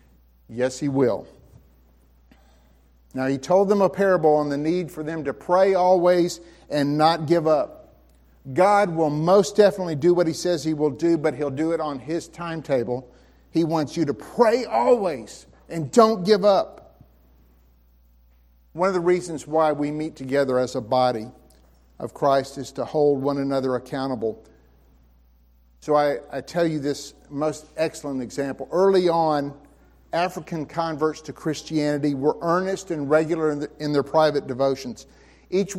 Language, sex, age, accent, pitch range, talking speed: English, male, 50-69, American, 125-170 Hz, 155 wpm